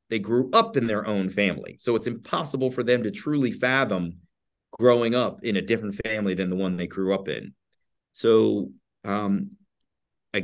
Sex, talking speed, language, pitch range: male, 180 wpm, English, 95-110 Hz